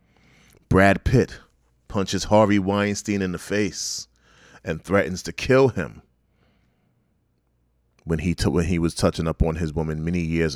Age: 30-49